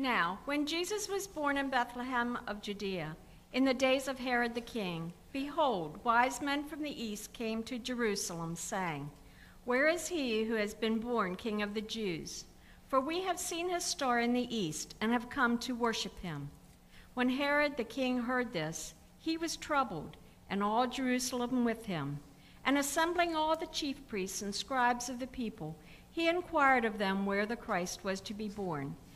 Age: 60-79